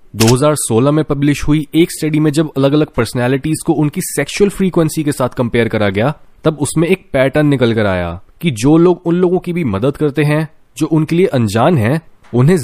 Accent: native